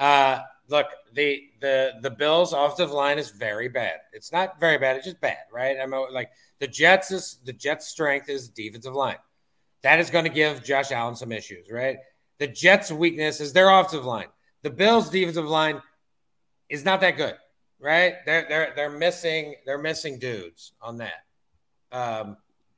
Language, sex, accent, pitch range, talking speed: English, male, American, 130-165 Hz, 170 wpm